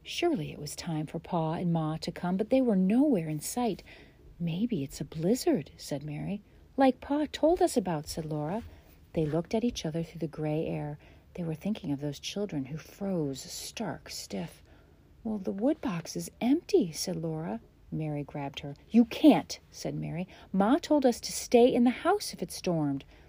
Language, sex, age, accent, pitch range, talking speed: English, female, 40-59, American, 150-220 Hz, 190 wpm